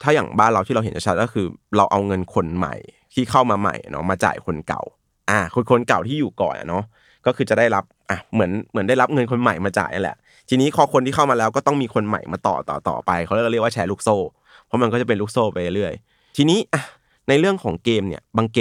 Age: 20-39